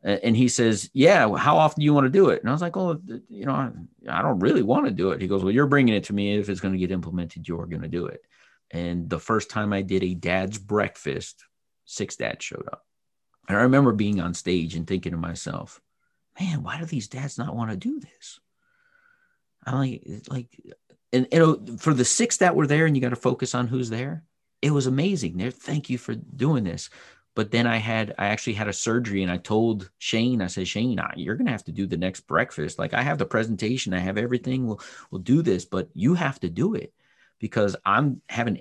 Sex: male